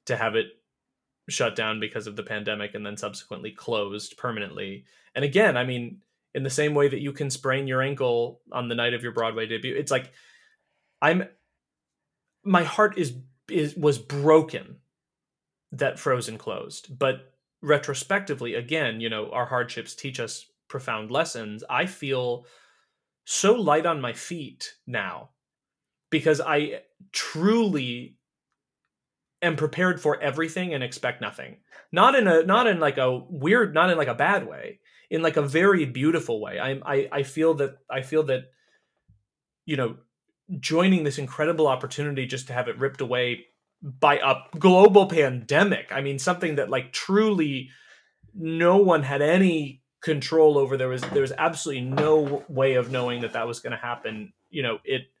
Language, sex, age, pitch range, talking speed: English, male, 30-49, 125-165 Hz, 165 wpm